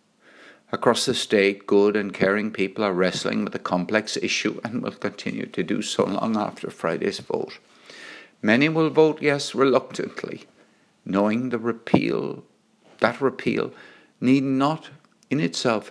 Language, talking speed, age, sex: English, 140 wpm, 60-79, male